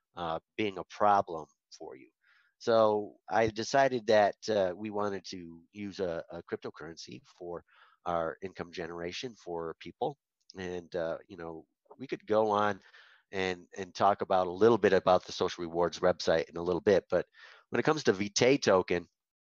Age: 30-49